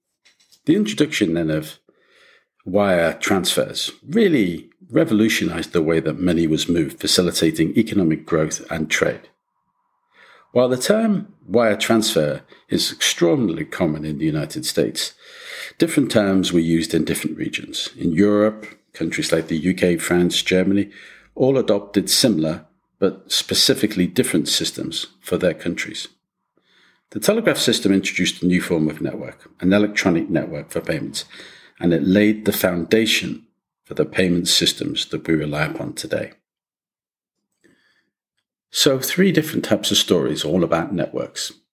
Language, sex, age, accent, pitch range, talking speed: English, male, 50-69, British, 85-110 Hz, 135 wpm